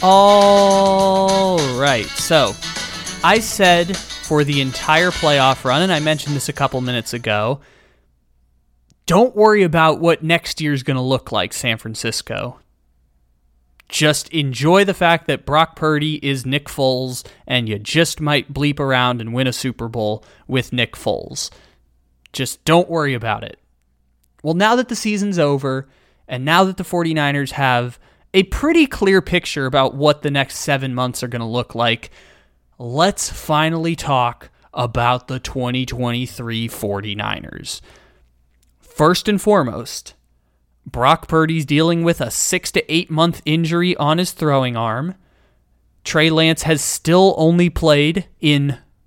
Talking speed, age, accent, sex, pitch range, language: 145 wpm, 20-39, American, male, 120-165 Hz, English